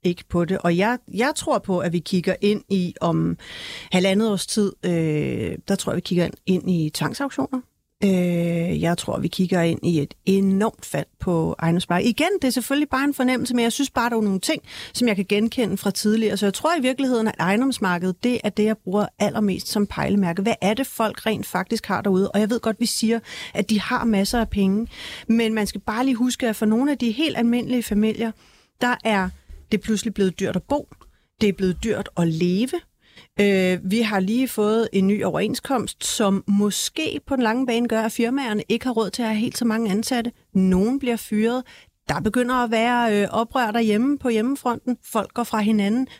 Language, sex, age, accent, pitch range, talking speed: Danish, female, 30-49, native, 195-240 Hz, 210 wpm